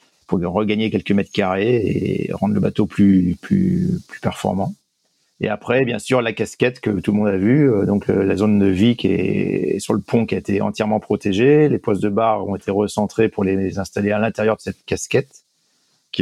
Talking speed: 205 wpm